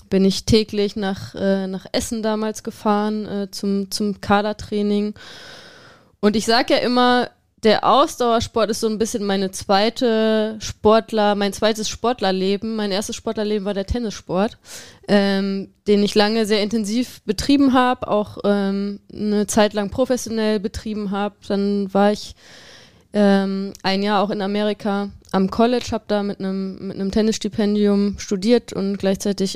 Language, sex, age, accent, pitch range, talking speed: German, female, 20-39, German, 195-225 Hz, 145 wpm